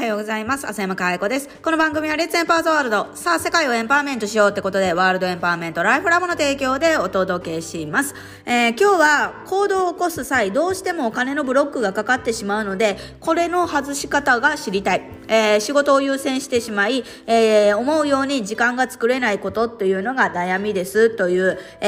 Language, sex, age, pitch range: Japanese, female, 20-39, 210-300 Hz